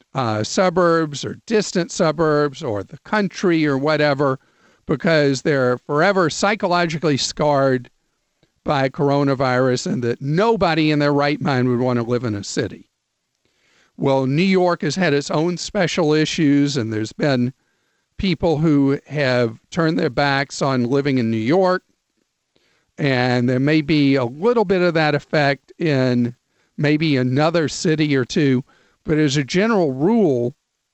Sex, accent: male, American